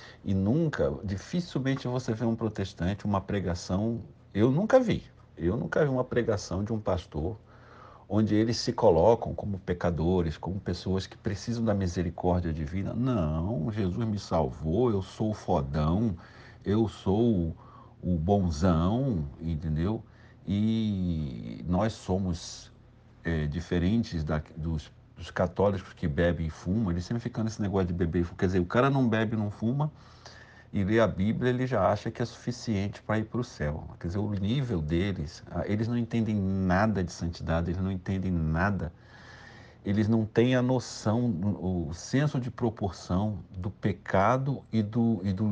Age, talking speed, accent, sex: 50-69, 160 wpm, Brazilian, male